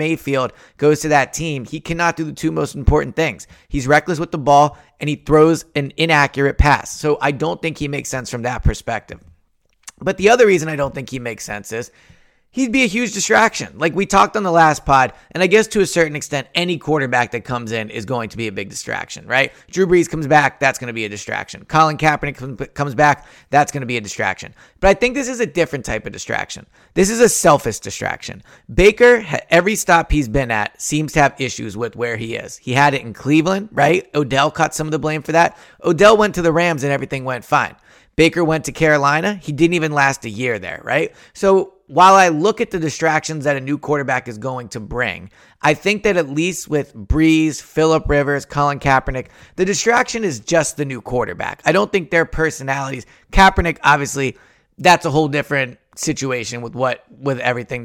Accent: American